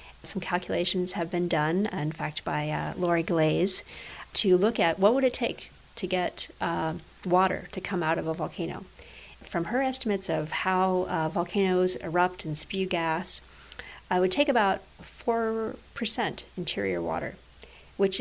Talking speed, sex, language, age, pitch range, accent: 160 wpm, female, English, 50-69, 170-200 Hz, American